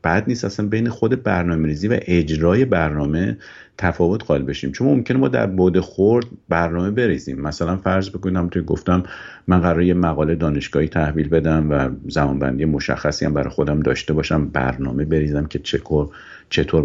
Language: Persian